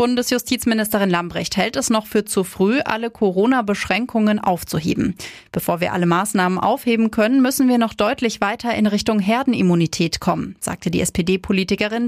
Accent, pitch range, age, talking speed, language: German, 180-230 Hz, 30-49, 145 wpm, German